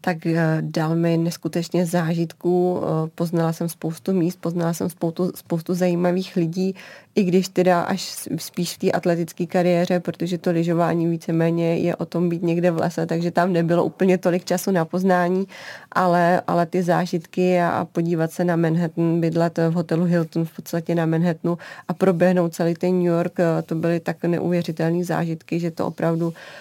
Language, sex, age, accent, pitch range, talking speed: Czech, female, 20-39, native, 170-185 Hz, 165 wpm